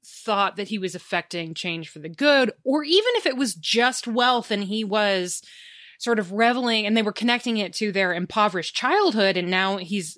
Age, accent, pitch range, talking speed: 20-39, American, 190-275 Hz, 200 wpm